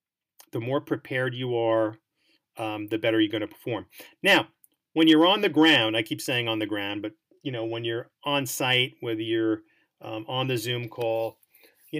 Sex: male